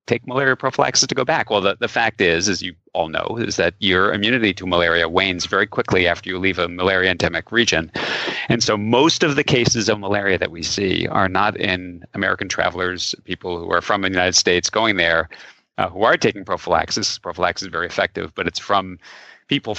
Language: English